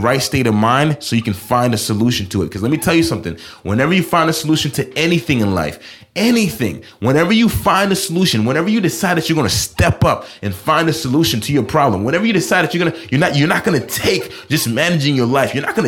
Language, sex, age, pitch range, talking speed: English, male, 30-49, 115-165 Hz, 265 wpm